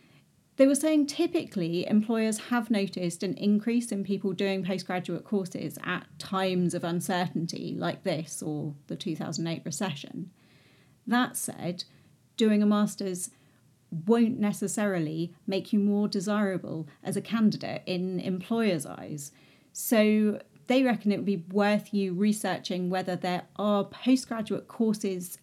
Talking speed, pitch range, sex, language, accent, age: 130 wpm, 175-225 Hz, female, English, British, 40-59